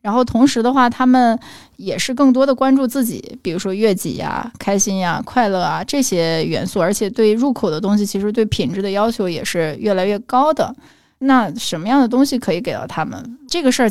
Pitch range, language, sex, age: 195-245 Hz, Chinese, female, 10-29